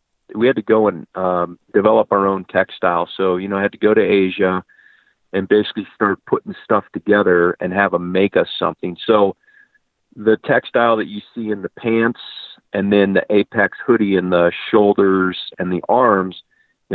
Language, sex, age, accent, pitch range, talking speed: English, male, 40-59, American, 95-110 Hz, 185 wpm